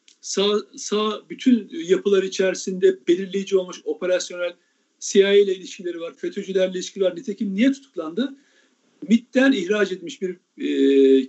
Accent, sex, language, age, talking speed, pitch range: native, male, Turkish, 50-69, 120 wpm, 195-275 Hz